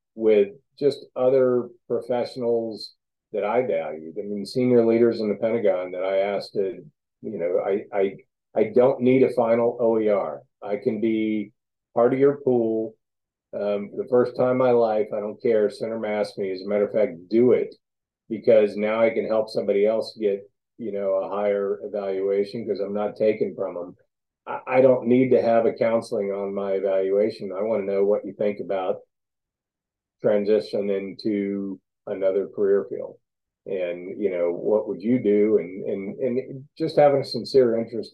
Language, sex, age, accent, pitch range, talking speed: English, male, 40-59, American, 100-125 Hz, 180 wpm